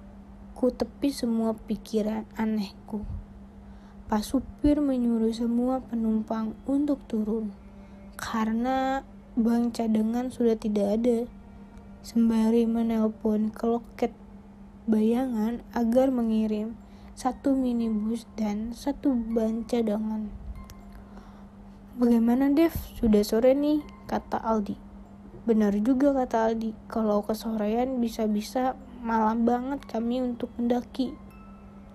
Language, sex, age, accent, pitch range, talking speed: Indonesian, female, 20-39, native, 210-250 Hz, 90 wpm